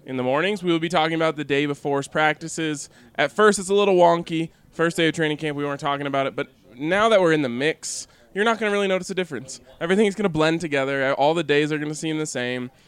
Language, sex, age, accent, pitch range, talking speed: English, male, 20-39, American, 140-170 Hz, 265 wpm